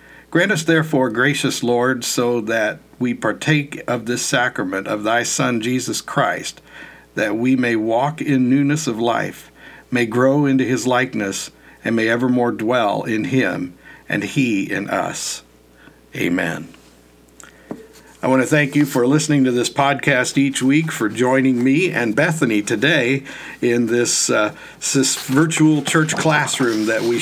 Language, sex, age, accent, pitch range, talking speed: English, male, 50-69, American, 120-145 Hz, 150 wpm